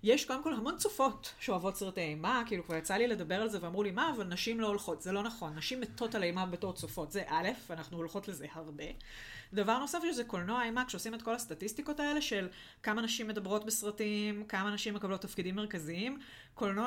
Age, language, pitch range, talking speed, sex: 30-49, Hebrew, 175-225 Hz, 205 wpm, female